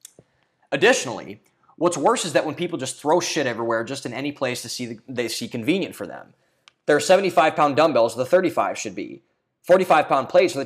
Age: 20-39